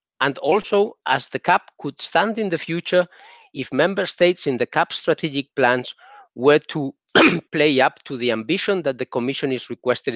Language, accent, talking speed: English, Spanish, 175 wpm